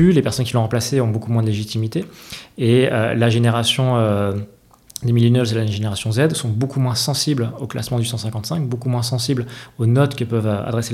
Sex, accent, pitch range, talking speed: male, French, 115-135 Hz, 205 wpm